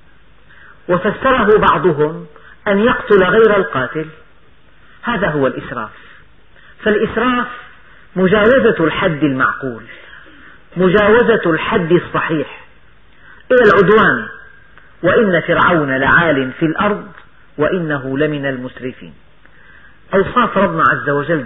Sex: female